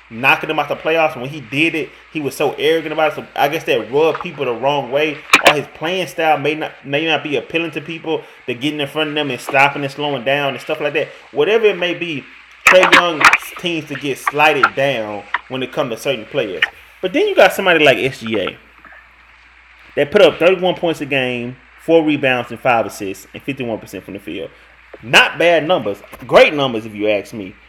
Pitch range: 135-170 Hz